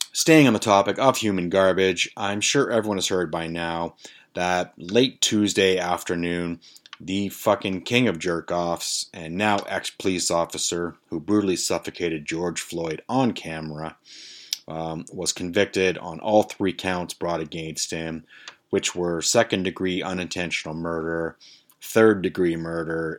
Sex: male